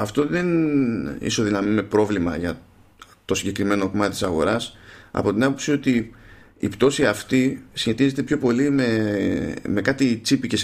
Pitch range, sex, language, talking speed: 100-135 Hz, male, Greek, 140 wpm